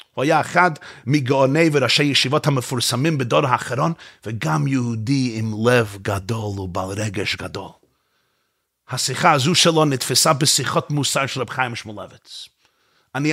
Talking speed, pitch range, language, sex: 120 wpm, 130-175 Hz, Hebrew, male